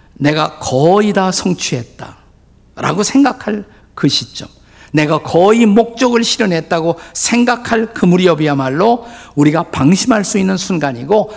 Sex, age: male, 50-69